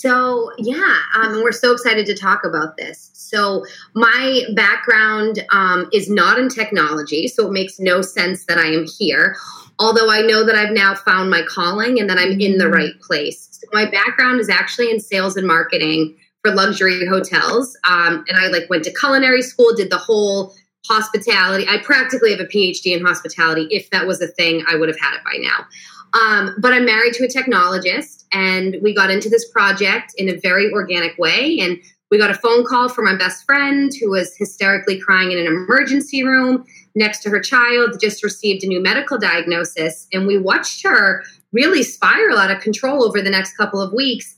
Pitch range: 185-230 Hz